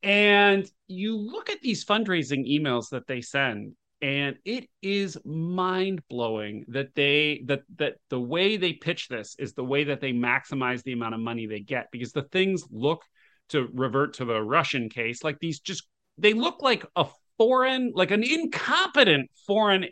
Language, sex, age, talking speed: English, male, 30-49, 175 wpm